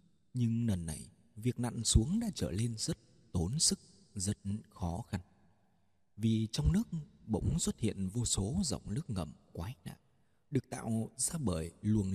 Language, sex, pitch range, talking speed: Vietnamese, male, 95-135 Hz, 165 wpm